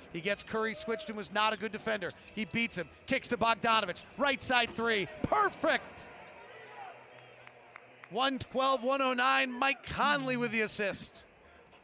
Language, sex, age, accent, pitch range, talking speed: English, male, 40-59, American, 210-255 Hz, 130 wpm